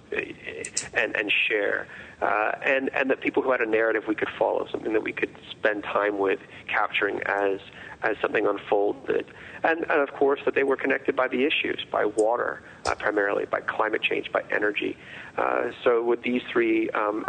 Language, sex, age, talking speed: English, male, 40-59, 185 wpm